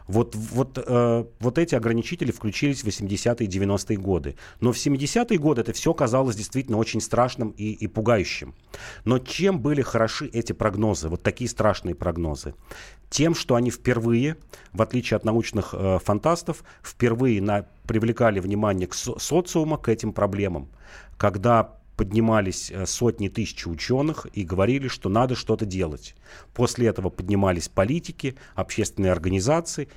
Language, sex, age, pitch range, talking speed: Russian, male, 40-59, 95-125 Hz, 145 wpm